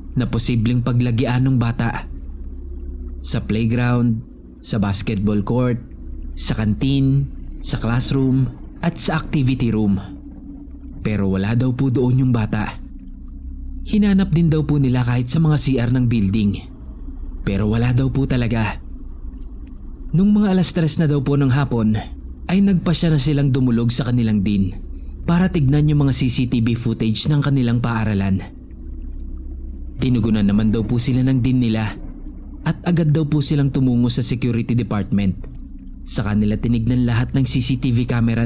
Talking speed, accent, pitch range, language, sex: 140 wpm, Filipino, 95-135 Hz, English, male